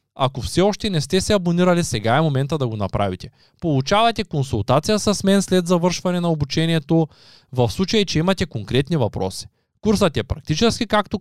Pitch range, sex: 135-195 Hz, male